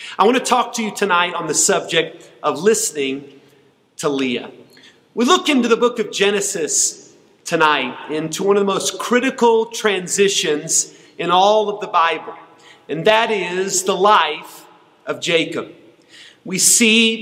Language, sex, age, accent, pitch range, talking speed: English, male, 40-59, American, 185-235 Hz, 150 wpm